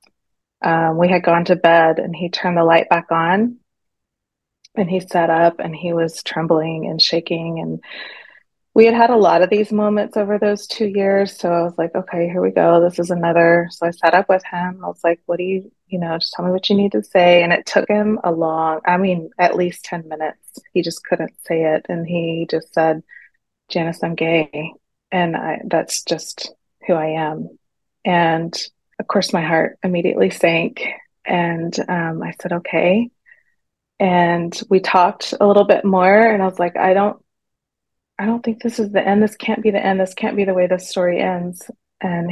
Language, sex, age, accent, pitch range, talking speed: English, female, 20-39, American, 170-200 Hz, 205 wpm